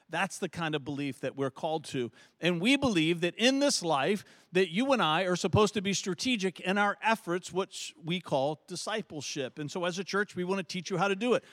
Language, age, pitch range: English, 50-69, 155-205 Hz